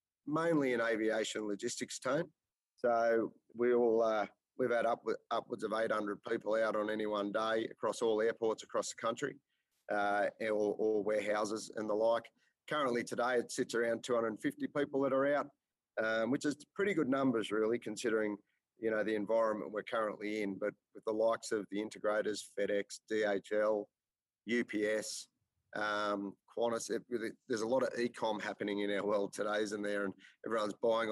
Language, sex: English, male